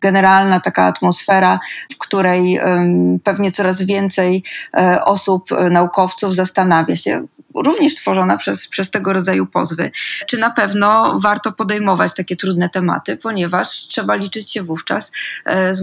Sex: female